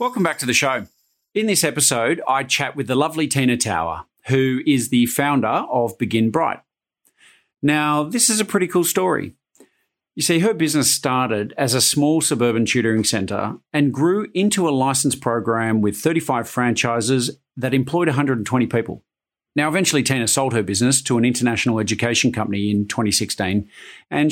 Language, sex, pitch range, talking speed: English, male, 115-150 Hz, 165 wpm